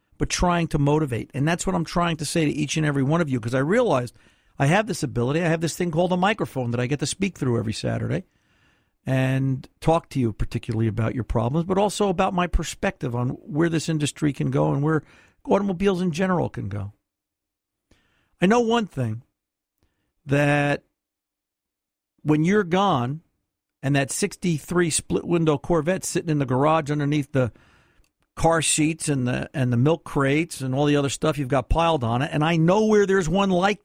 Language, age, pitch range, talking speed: English, 50-69, 125-170 Hz, 195 wpm